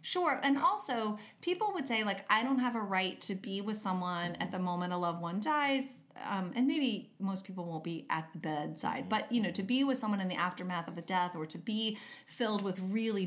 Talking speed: 235 wpm